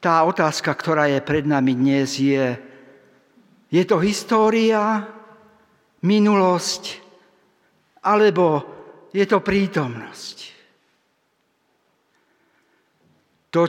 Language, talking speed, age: Slovak, 75 wpm, 60-79